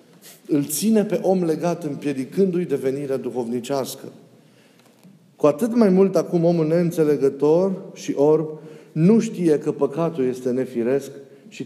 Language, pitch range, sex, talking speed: Romanian, 135-175 Hz, male, 125 wpm